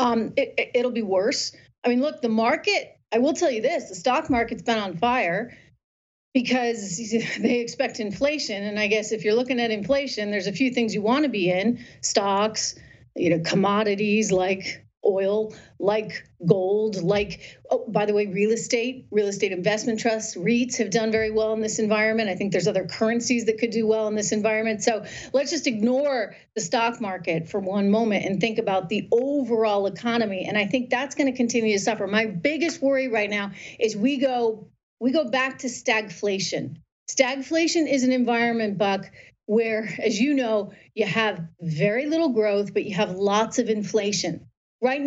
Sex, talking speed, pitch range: female, 185 wpm, 205-255 Hz